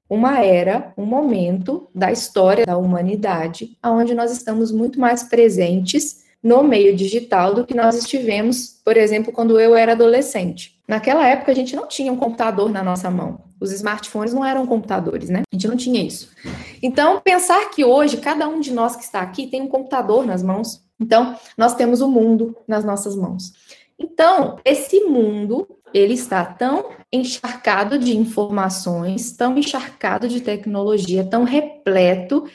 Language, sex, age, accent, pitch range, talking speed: Portuguese, female, 20-39, Brazilian, 200-260 Hz, 160 wpm